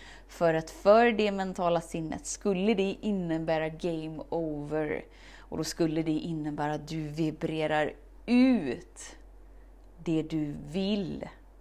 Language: Swedish